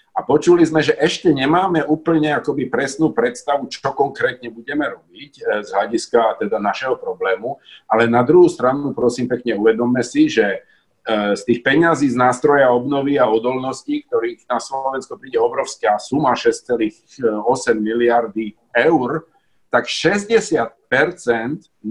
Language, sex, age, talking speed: Slovak, male, 50-69, 130 wpm